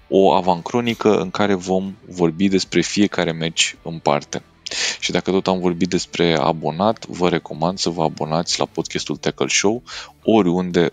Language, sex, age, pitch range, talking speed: Romanian, male, 20-39, 75-95 Hz, 155 wpm